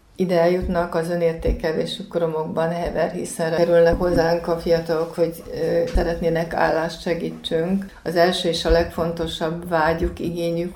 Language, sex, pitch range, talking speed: Hungarian, female, 160-175 Hz, 125 wpm